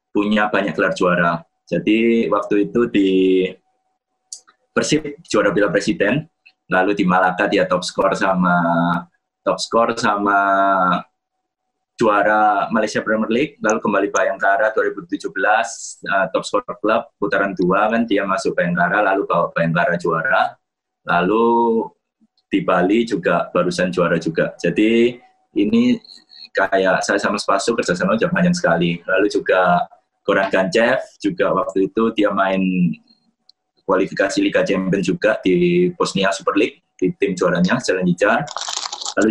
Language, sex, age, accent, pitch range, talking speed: Indonesian, male, 20-39, native, 95-145 Hz, 130 wpm